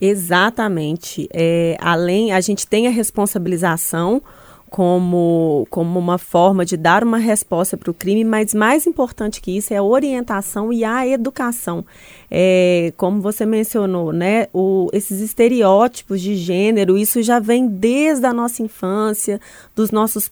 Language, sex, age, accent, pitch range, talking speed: Portuguese, female, 20-39, Brazilian, 195-245 Hz, 145 wpm